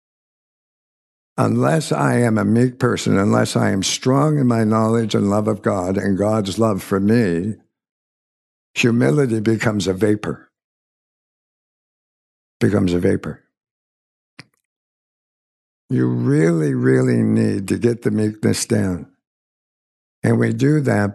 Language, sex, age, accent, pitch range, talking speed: English, male, 60-79, American, 95-120 Hz, 120 wpm